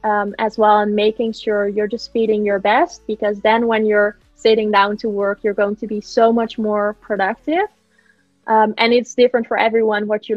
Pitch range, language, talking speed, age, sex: 210-240 Hz, English, 205 wpm, 20-39, female